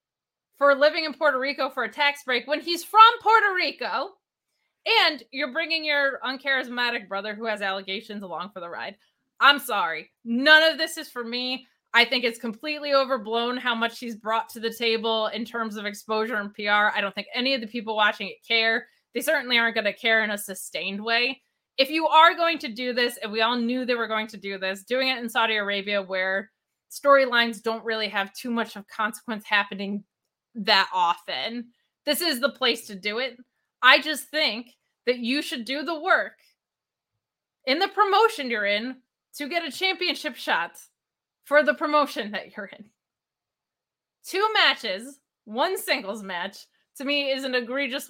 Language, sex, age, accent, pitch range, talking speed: English, female, 20-39, American, 215-285 Hz, 185 wpm